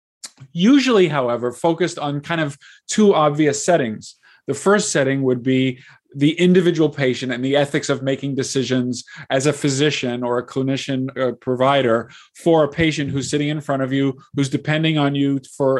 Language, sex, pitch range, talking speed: English, male, 135-170 Hz, 165 wpm